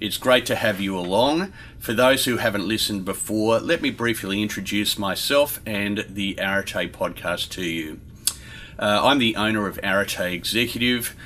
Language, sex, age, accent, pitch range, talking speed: English, male, 40-59, Australian, 95-115 Hz, 160 wpm